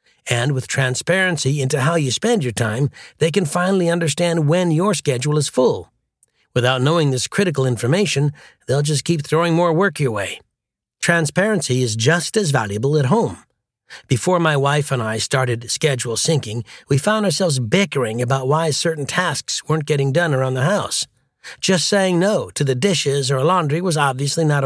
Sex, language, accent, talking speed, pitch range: male, English, American, 175 wpm, 135-170 Hz